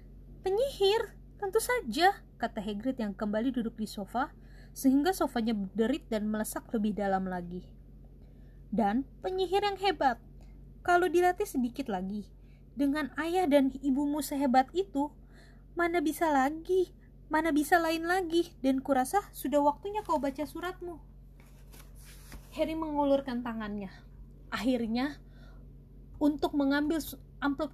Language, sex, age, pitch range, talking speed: Indonesian, female, 20-39, 230-305 Hz, 115 wpm